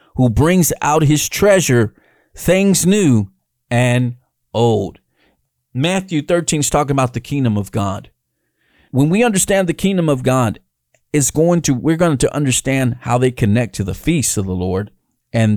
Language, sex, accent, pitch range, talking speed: English, male, American, 120-175 Hz, 160 wpm